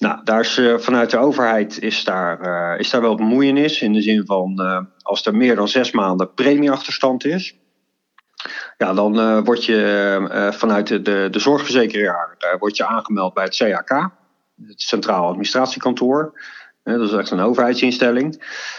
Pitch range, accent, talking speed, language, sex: 110-145 Hz, Dutch, 150 wpm, Dutch, male